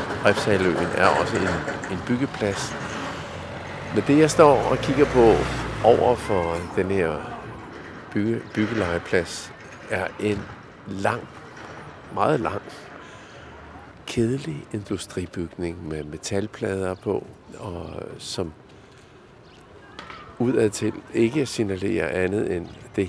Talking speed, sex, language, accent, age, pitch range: 90 wpm, male, Danish, native, 50-69, 90-120 Hz